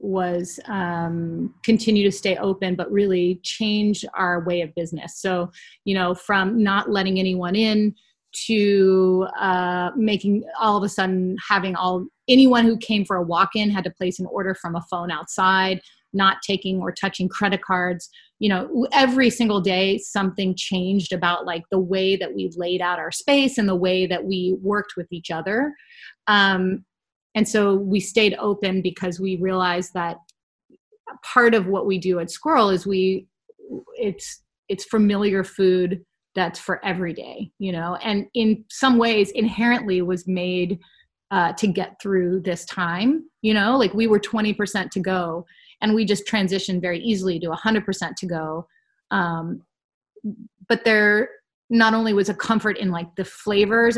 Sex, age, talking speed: female, 30-49, 170 wpm